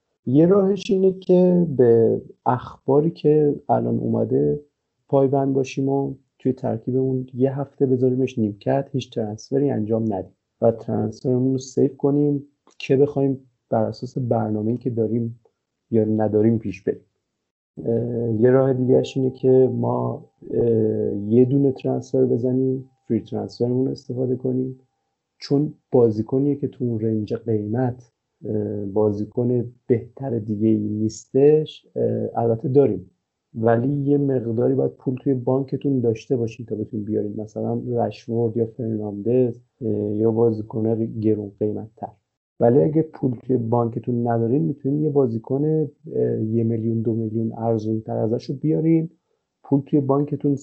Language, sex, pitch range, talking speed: Persian, male, 115-140 Hz, 125 wpm